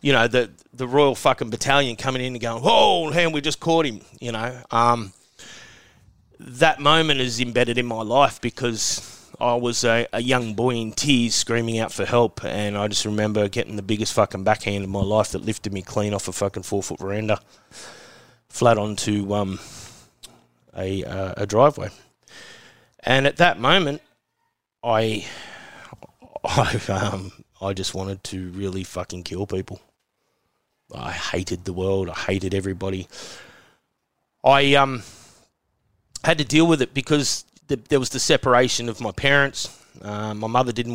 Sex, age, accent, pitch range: male, 30-49, Australian, 105-140 Hz